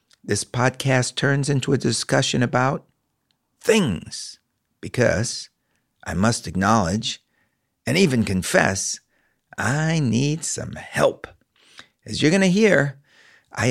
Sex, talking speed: male, 110 wpm